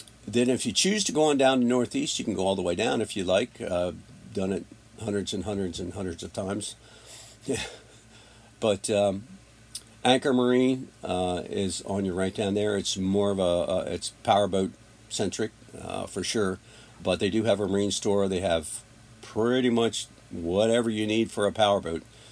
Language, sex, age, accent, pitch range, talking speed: English, male, 50-69, American, 95-115 Hz, 190 wpm